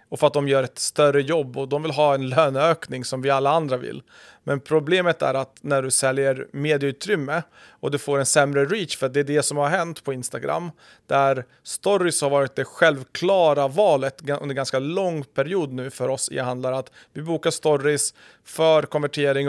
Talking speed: 200 wpm